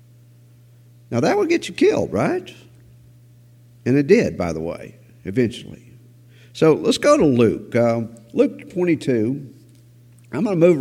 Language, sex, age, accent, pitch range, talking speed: English, male, 50-69, American, 115-140 Hz, 145 wpm